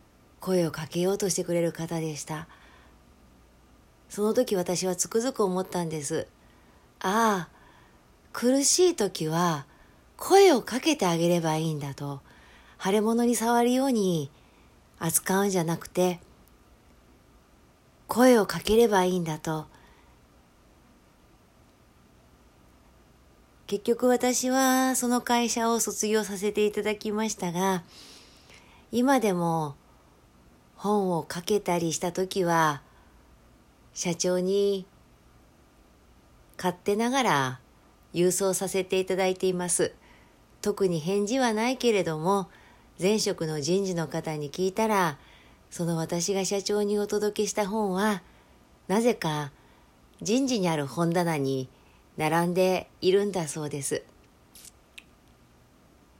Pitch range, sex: 145-210 Hz, female